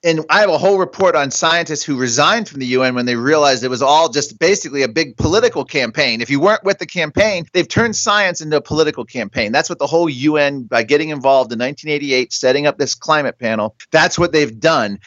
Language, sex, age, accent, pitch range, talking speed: English, male, 40-59, American, 135-170 Hz, 225 wpm